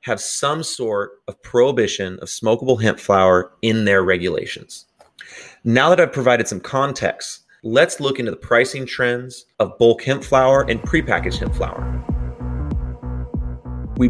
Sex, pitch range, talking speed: male, 95-125 Hz, 140 wpm